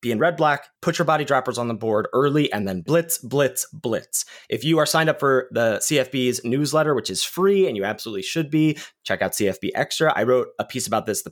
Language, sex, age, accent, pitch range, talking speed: English, male, 30-49, American, 105-155 Hz, 240 wpm